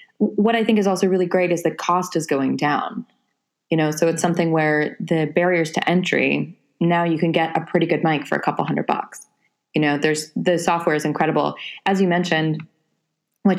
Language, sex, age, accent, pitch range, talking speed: English, female, 20-39, American, 155-185 Hz, 210 wpm